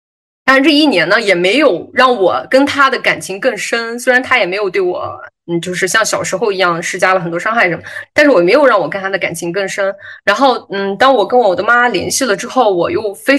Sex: female